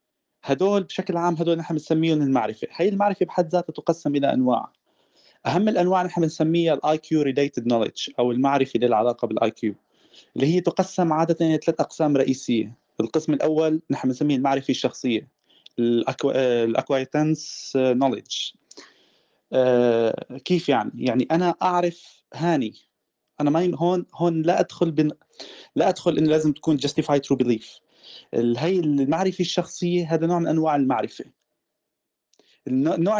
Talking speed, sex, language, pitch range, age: 135 wpm, male, Arabic, 135-175 Hz, 20-39